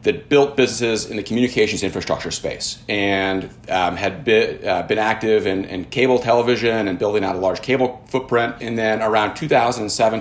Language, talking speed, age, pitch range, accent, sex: English, 175 wpm, 40-59, 100-120 Hz, American, male